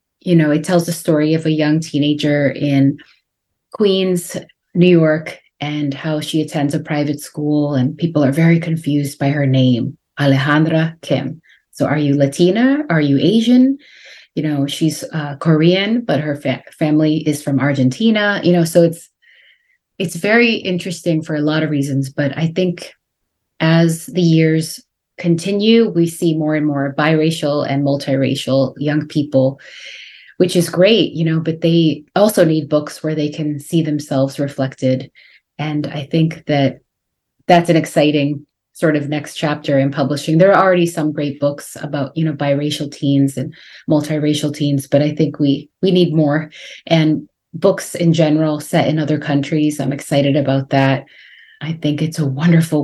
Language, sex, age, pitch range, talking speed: English, female, 30-49, 145-165 Hz, 165 wpm